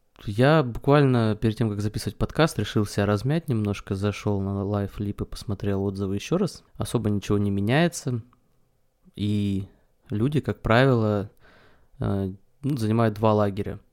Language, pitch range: Russian, 105-125 Hz